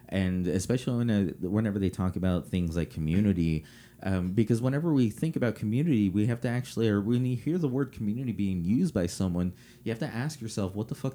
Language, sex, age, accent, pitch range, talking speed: English, male, 30-49, American, 95-115 Hz, 220 wpm